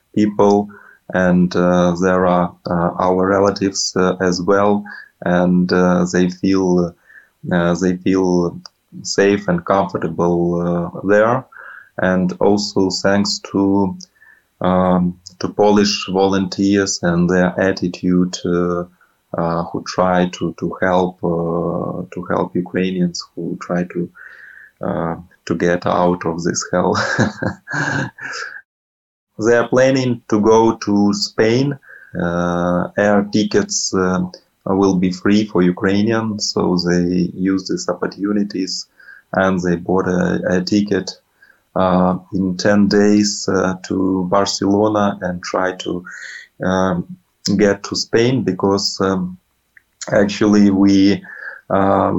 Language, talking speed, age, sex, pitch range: English, 115 wpm, 20-39, male, 90-100 Hz